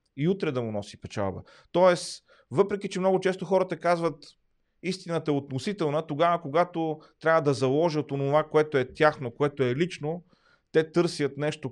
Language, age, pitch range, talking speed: Bulgarian, 30-49, 125-165 Hz, 160 wpm